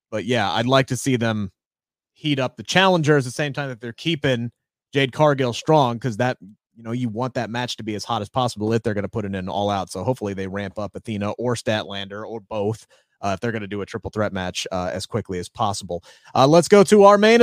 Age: 30-49